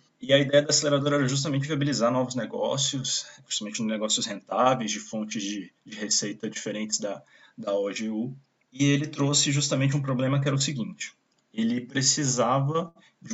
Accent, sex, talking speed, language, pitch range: Brazilian, male, 160 wpm, Portuguese, 110-140 Hz